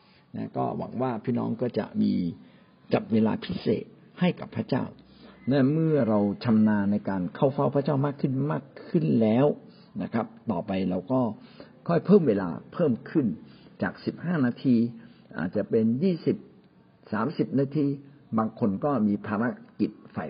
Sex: male